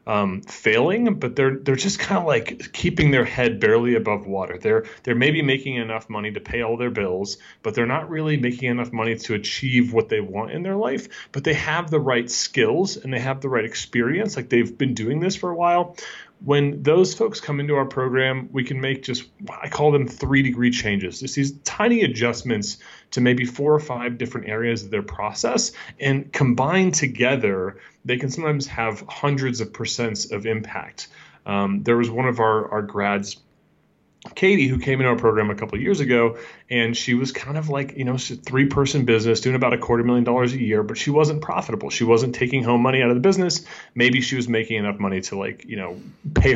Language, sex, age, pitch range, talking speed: English, male, 30-49, 115-145 Hz, 215 wpm